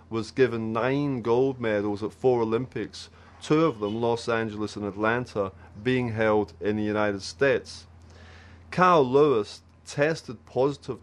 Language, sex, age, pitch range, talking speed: English, male, 30-49, 100-125 Hz, 135 wpm